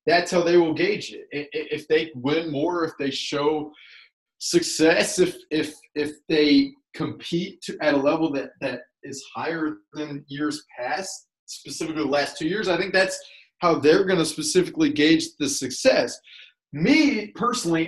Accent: American